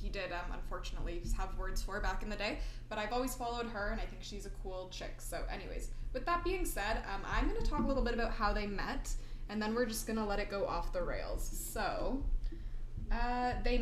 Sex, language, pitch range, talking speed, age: female, English, 180-230 Hz, 235 wpm, 20-39